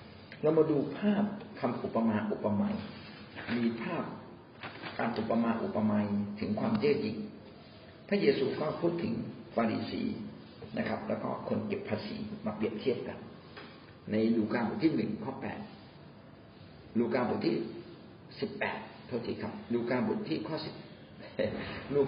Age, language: 50-69, Thai